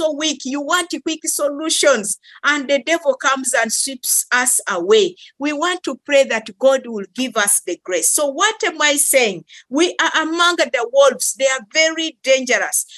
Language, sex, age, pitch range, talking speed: English, female, 50-69, 235-310 Hz, 175 wpm